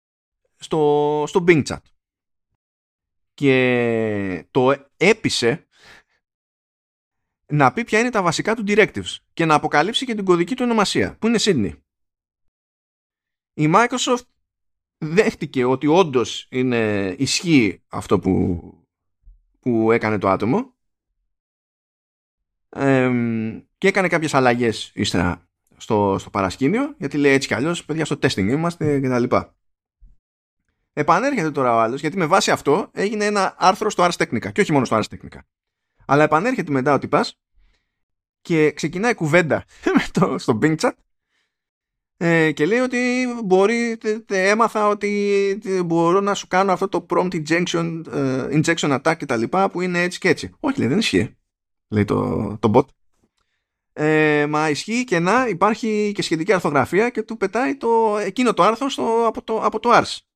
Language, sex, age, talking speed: Greek, male, 20-39, 140 wpm